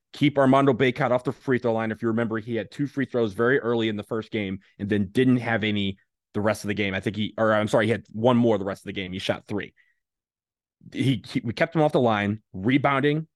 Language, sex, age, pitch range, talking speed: English, male, 30-49, 105-125 Hz, 270 wpm